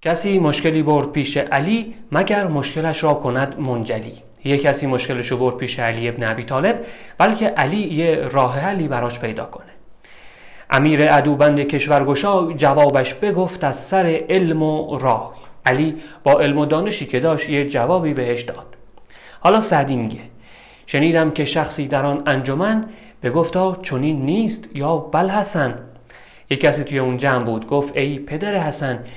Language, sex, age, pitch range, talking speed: Persian, male, 30-49, 130-180 Hz, 150 wpm